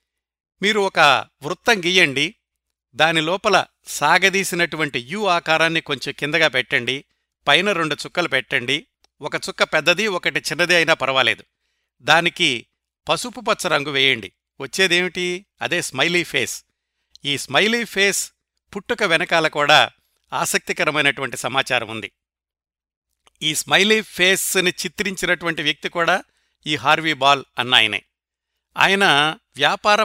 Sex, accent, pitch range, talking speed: male, native, 145-190 Hz, 105 wpm